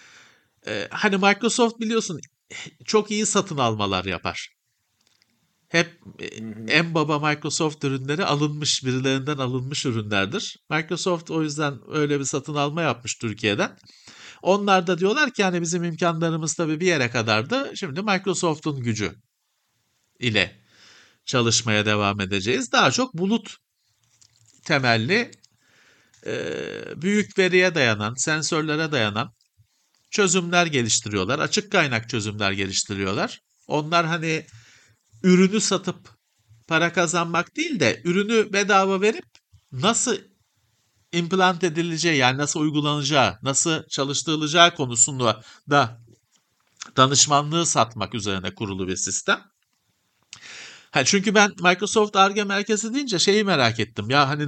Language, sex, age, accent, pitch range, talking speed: Turkish, male, 50-69, native, 115-185 Hz, 110 wpm